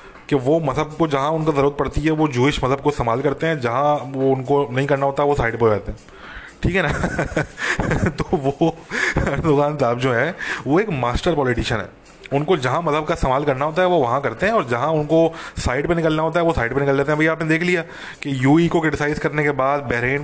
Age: 20-39